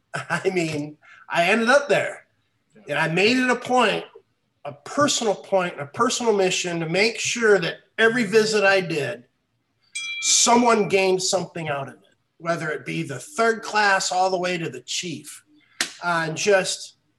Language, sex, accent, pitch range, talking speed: English, male, American, 160-205 Hz, 160 wpm